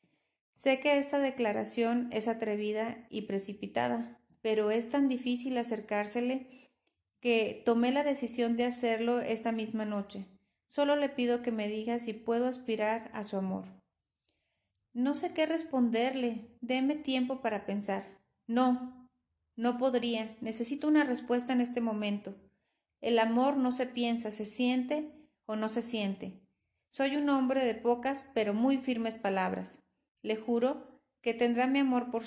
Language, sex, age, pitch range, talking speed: Spanish, female, 30-49, 215-260 Hz, 145 wpm